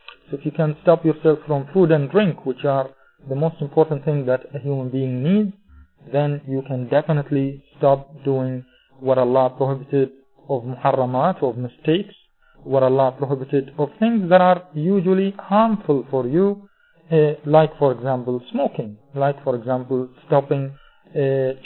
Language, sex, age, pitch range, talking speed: English, male, 40-59, 130-160 Hz, 150 wpm